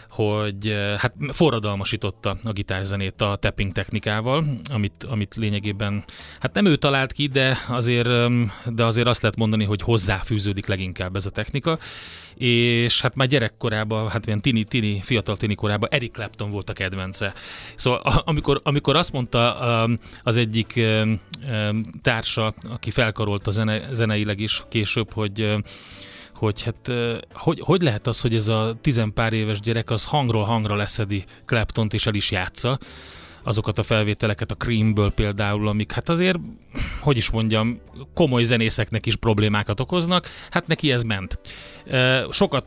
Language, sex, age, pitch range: Hungarian, male, 30-49, 105-125 Hz